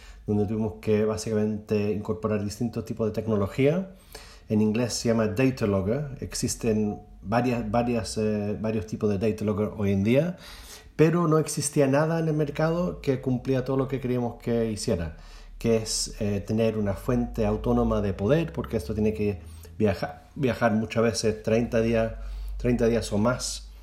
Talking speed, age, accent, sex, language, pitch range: 155 wpm, 30-49, Argentinian, male, Spanish, 105-120 Hz